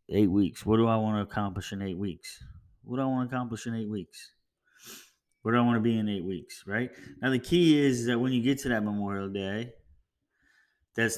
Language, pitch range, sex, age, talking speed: English, 95-120 Hz, male, 20-39, 235 wpm